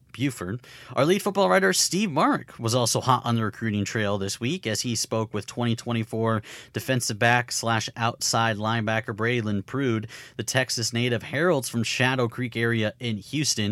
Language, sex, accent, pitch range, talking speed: English, male, American, 105-135 Hz, 160 wpm